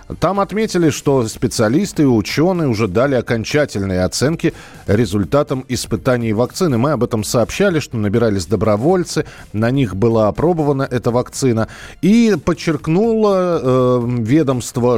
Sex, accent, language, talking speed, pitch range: male, native, Russian, 120 wpm, 105-145 Hz